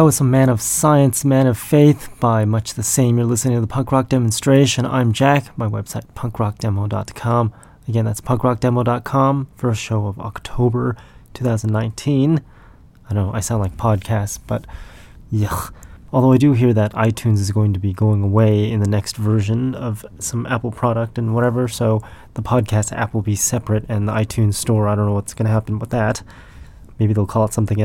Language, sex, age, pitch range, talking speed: English, male, 20-39, 105-120 Hz, 190 wpm